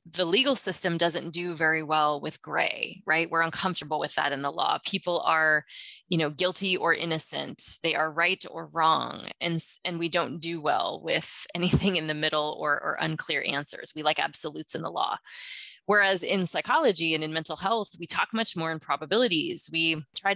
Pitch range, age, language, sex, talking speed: 155-180 Hz, 20-39, English, female, 190 wpm